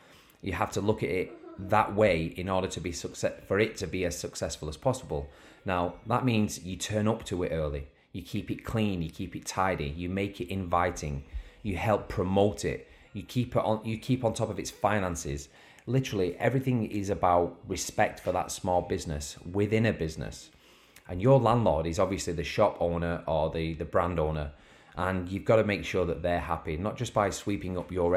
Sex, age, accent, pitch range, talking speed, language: male, 30-49, British, 85-105 Hz, 205 wpm, English